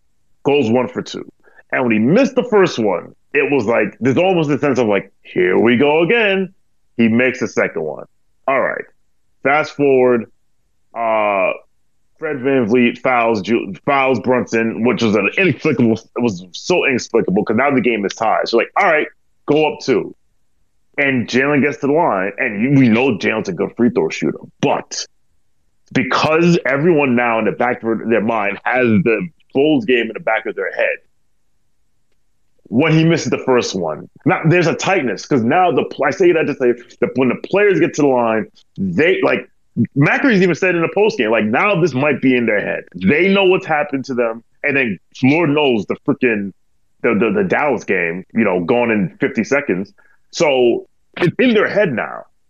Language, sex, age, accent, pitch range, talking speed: English, male, 30-49, American, 120-165 Hz, 195 wpm